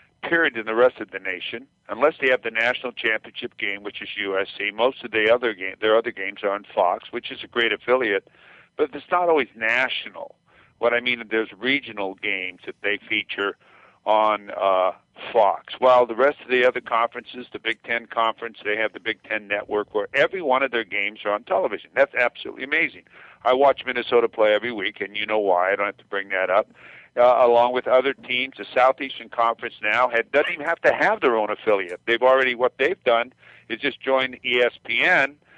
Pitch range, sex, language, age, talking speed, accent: 110-130 Hz, male, English, 60-79, 205 wpm, American